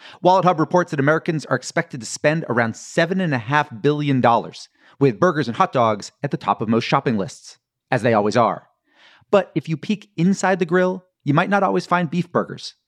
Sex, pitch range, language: male, 125-170 Hz, English